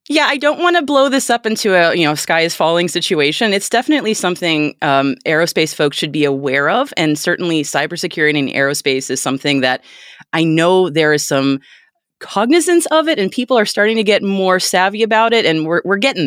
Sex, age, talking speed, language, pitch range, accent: female, 30-49, 205 wpm, English, 140-200 Hz, American